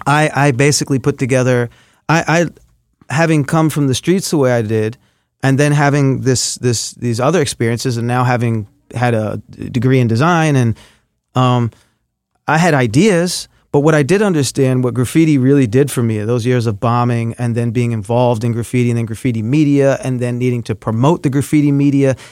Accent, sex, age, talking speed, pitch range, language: American, male, 30-49, 190 wpm, 120-140 Hz, English